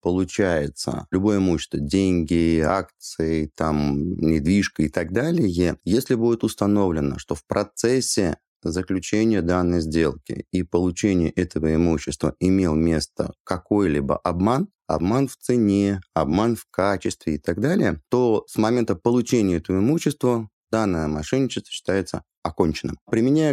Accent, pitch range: native, 85-120 Hz